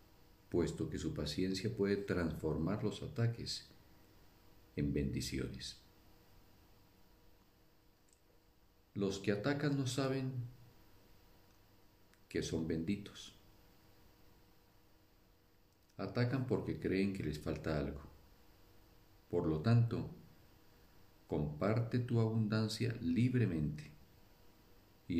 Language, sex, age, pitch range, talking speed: Spanish, male, 50-69, 85-105 Hz, 80 wpm